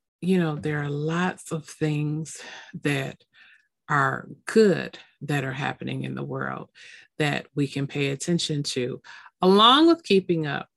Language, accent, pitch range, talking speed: English, American, 135-155 Hz, 145 wpm